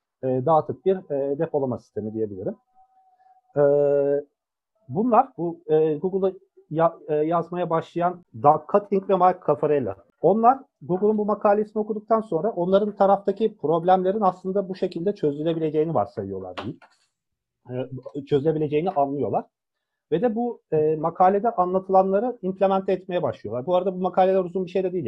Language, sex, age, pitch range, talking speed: Turkish, male, 40-59, 150-205 Hz, 110 wpm